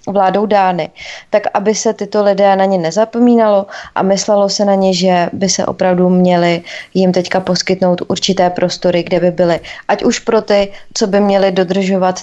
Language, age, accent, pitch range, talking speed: Czech, 20-39, native, 185-205 Hz, 175 wpm